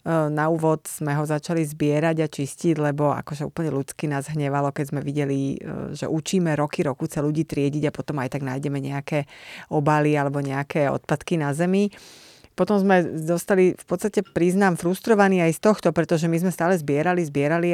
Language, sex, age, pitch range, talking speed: Slovak, female, 30-49, 150-175 Hz, 175 wpm